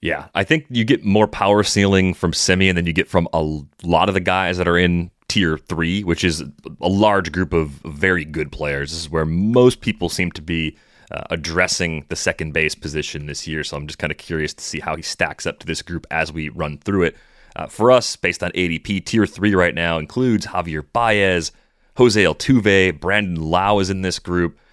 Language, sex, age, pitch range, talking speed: English, male, 30-49, 80-100 Hz, 220 wpm